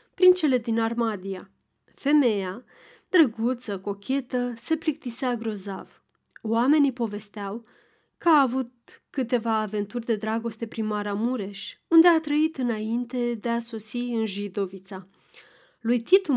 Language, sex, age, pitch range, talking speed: Romanian, female, 30-49, 215-270 Hz, 115 wpm